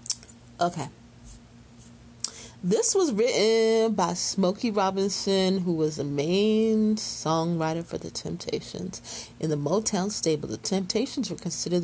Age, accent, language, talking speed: 30-49, American, English, 115 wpm